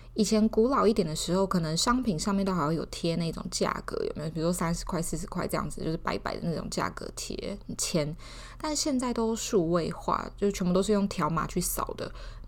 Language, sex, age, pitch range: Chinese, female, 20-39, 175-220 Hz